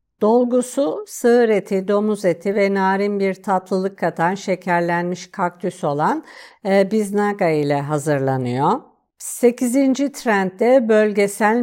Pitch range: 175-230 Hz